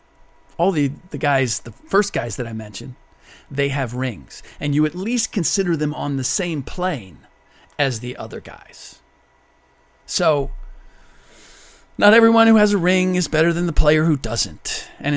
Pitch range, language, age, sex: 120-155 Hz, English, 40-59, male